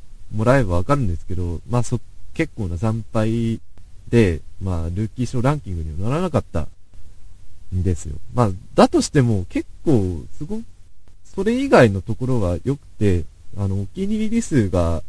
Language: Japanese